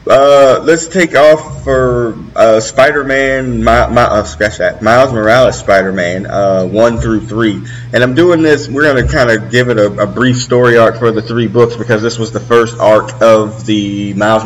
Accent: American